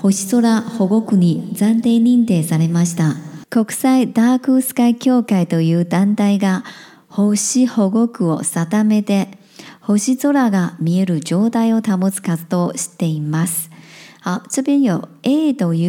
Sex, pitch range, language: male, 180-235 Hz, Chinese